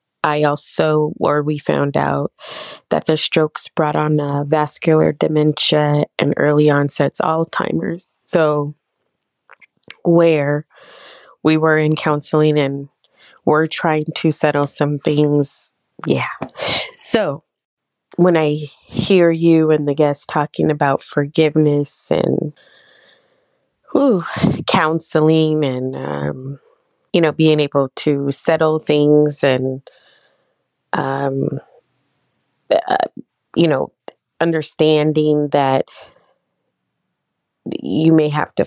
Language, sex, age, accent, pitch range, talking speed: English, female, 20-39, American, 140-155 Hz, 100 wpm